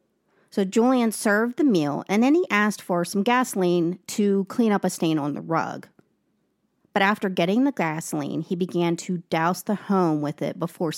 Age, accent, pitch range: 40-59, American, 165-205 Hz